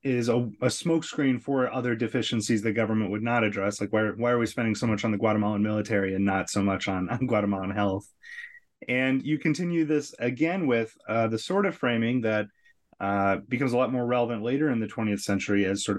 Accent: American